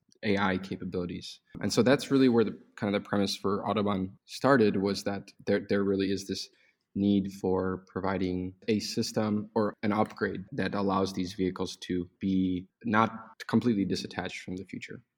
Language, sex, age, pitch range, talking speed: English, male, 20-39, 95-115 Hz, 165 wpm